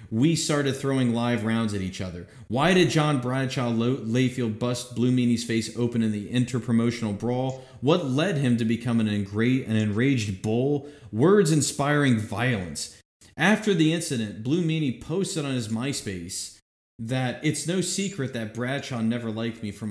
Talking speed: 155 wpm